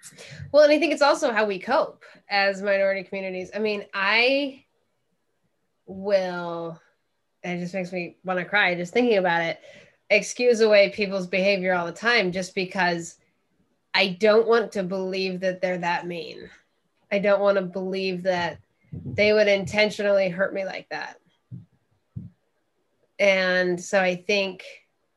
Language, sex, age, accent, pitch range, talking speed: English, female, 20-39, American, 180-210 Hz, 150 wpm